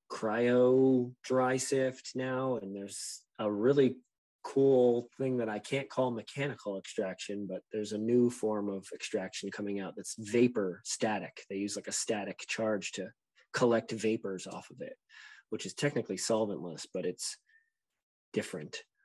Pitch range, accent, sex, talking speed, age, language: 110-135 Hz, American, male, 150 wpm, 20-39, English